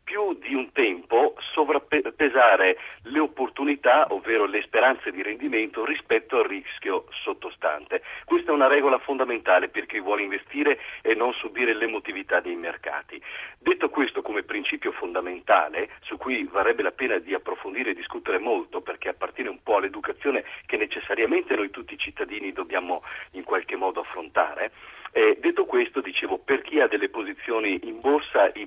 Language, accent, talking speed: Italian, native, 155 wpm